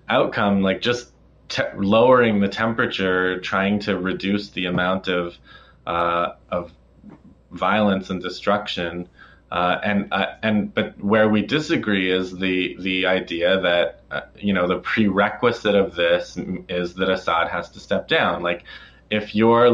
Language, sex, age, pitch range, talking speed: English, male, 20-39, 95-105 Hz, 145 wpm